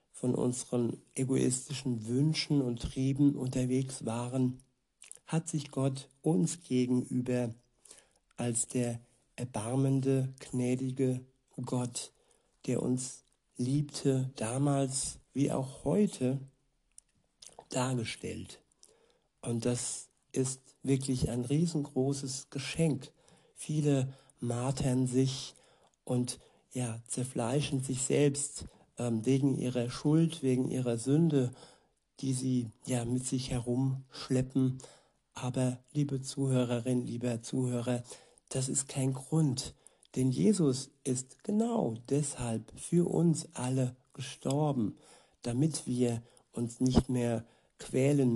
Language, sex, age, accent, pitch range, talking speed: German, male, 60-79, German, 125-140 Hz, 95 wpm